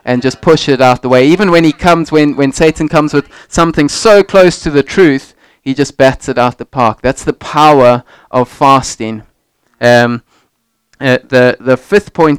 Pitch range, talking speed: 125-150 Hz, 195 wpm